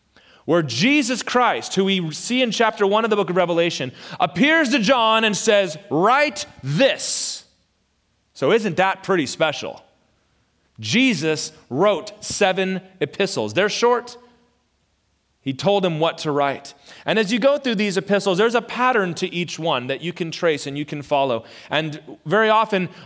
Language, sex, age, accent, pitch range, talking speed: English, male, 30-49, American, 155-215 Hz, 160 wpm